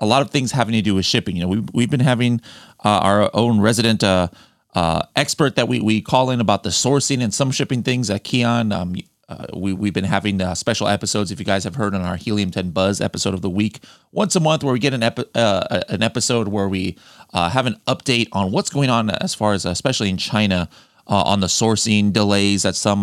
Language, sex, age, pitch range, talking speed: English, male, 30-49, 100-130 Hz, 235 wpm